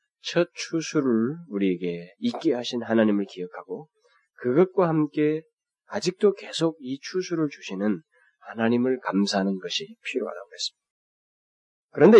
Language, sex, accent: Korean, male, native